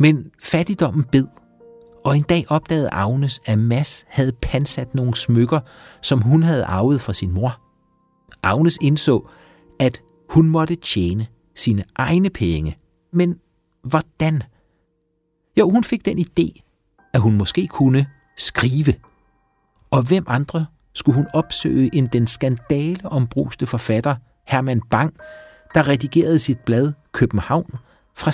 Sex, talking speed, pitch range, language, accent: male, 130 wpm, 115-160 Hz, Danish, native